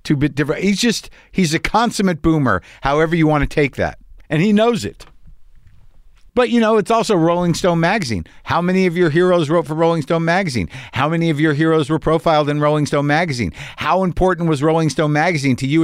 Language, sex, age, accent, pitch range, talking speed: English, male, 50-69, American, 115-165 Hz, 210 wpm